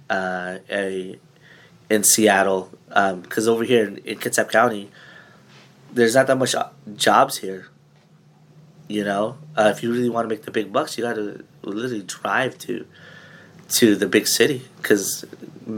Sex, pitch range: male, 95-115 Hz